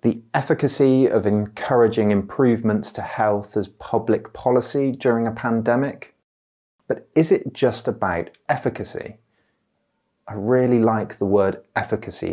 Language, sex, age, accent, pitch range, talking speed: English, male, 30-49, British, 95-125 Hz, 120 wpm